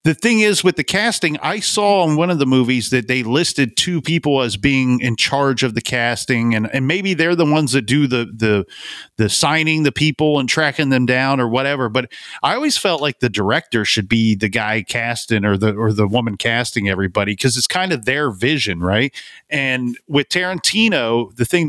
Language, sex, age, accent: English, male, 40-59, American